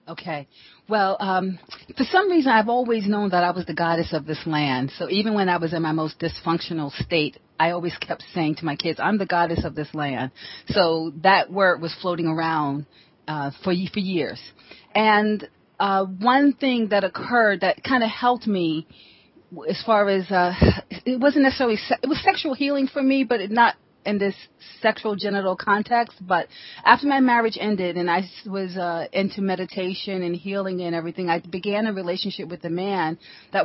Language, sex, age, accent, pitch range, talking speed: English, female, 40-59, American, 170-205 Hz, 190 wpm